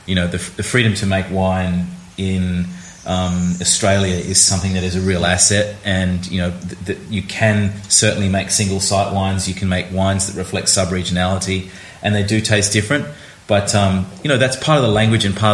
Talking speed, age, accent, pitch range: 205 wpm, 30-49, Australian, 90-105 Hz